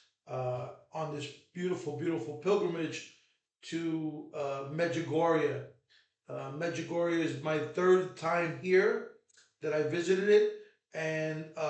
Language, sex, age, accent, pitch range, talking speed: English, male, 40-59, American, 150-175 Hz, 110 wpm